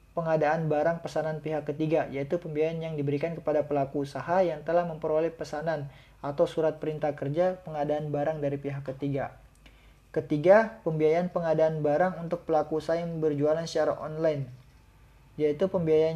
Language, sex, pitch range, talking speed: Indonesian, male, 145-165 Hz, 140 wpm